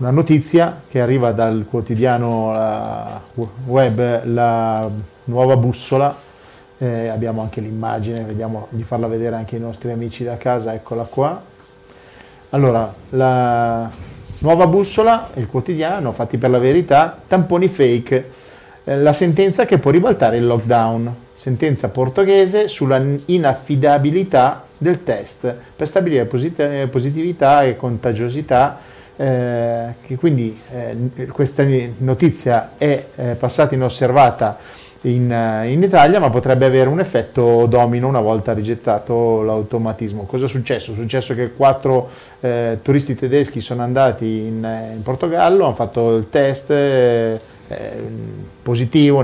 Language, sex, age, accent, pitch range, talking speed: Italian, male, 40-59, native, 115-135 Hz, 125 wpm